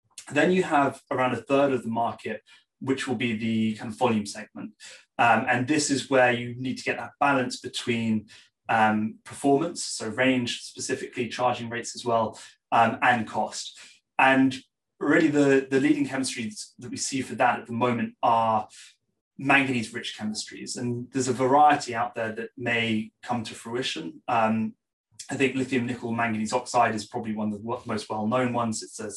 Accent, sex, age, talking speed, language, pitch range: British, male, 20-39, 175 wpm, English, 110-130 Hz